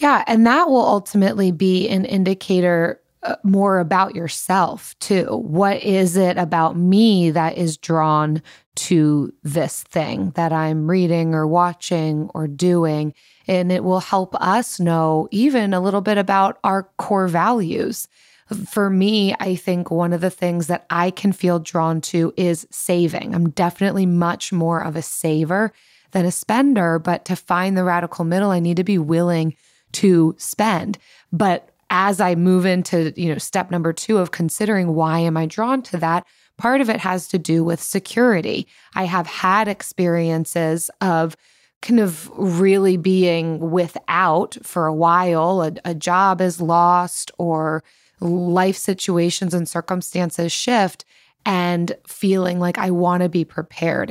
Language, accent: English, American